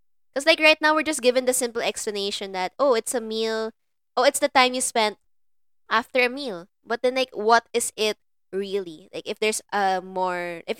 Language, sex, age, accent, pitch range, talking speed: English, female, 20-39, Filipino, 200-260 Hz, 205 wpm